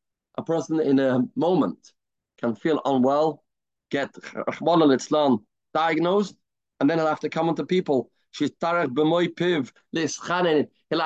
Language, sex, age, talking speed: English, male, 30-49, 110 wpm